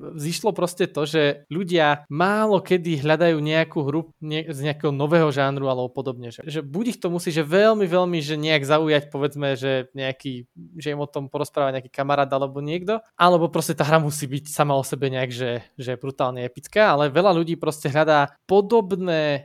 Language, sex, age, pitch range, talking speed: Slovak, male, 20-39, 140-170 Hz, 185 wpm